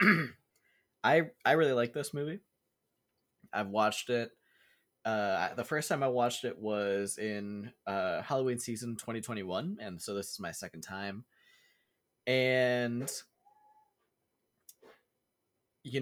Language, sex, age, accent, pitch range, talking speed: English, male, 20-39, American, 100-130 Hz, 115 wpm